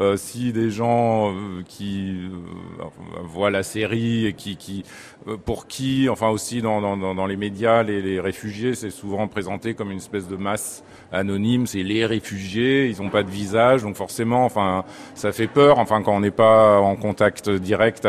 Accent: French